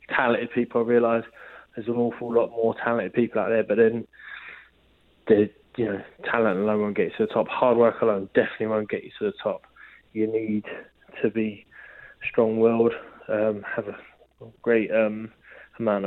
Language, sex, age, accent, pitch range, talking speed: English, male, 20-39, British, 105-115 Hz, 175 wpm